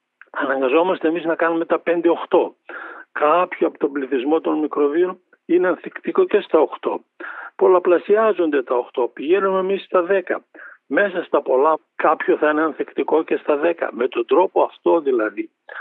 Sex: male